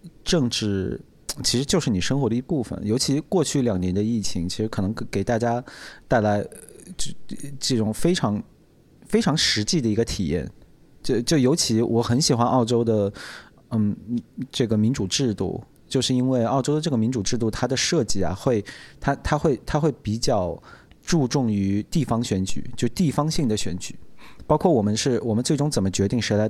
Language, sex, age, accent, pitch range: Chinese, male, 30-49, native, 100-125 Hz